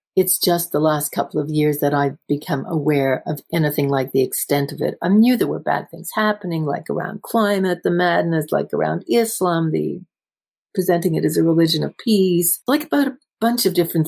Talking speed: 200 wpm